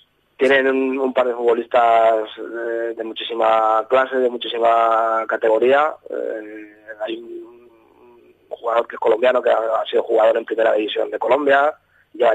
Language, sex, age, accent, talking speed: Spanish, male, 20-39, Spanish, 155 wpm